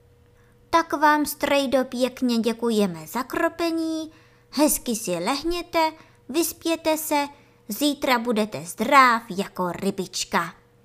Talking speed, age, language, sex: 95 wpm, 20-39, Czech, male